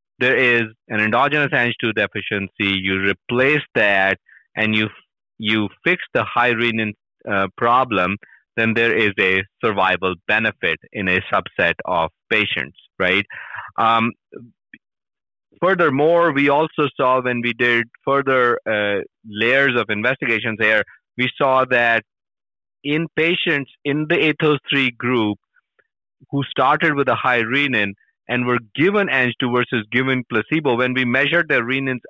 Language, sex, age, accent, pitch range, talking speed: English, male, 30-49, Indian, 105-135 Hz, 135 wpm